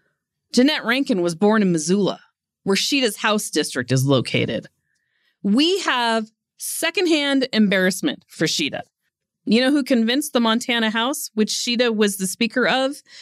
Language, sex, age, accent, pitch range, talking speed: English, female, 30-49, American, 195-255 Hz, 140 wpm